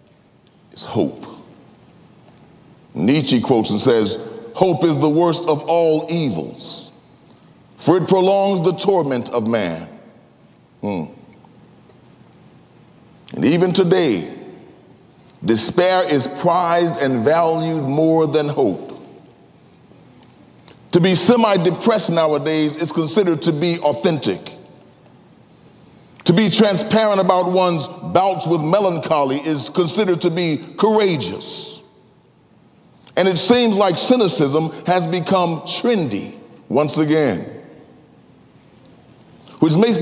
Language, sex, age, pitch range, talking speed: English, male, 40-59, 155-195 Hz, 100 wpm